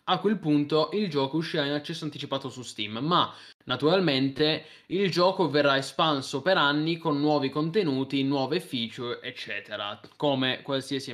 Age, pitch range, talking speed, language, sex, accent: 20-39, 125-160 Hz, 145 wpm, Italian, male, native